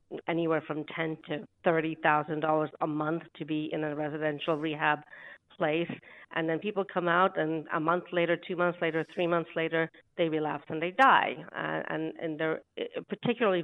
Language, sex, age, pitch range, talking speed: English, female, 50-69, 155-175 Hz, 170 wpm